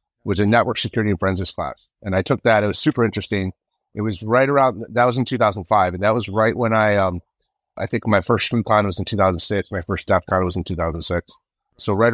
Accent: American